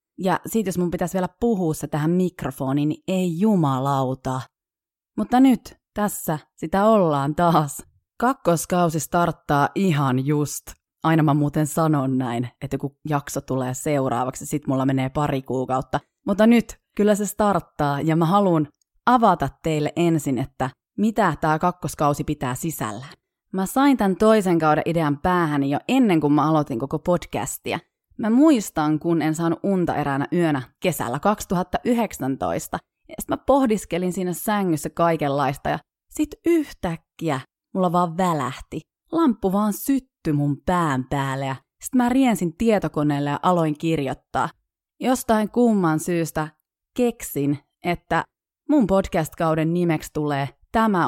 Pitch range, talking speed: 145-195 Hz, 135 wpm